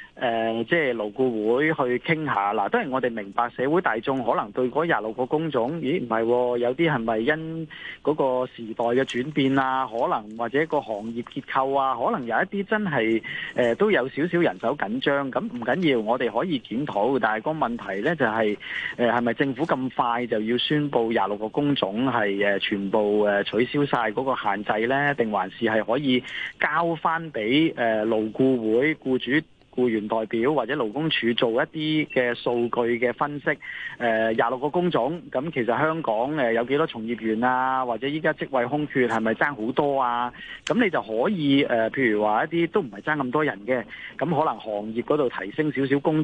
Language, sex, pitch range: Chinese, male, 115-150 Hz